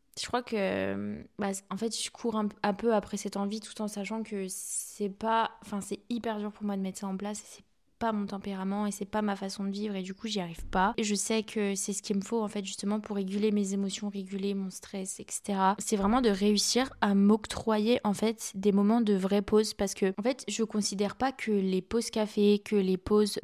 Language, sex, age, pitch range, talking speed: French, female, 20-39, 200-225 Hz, 240 wpm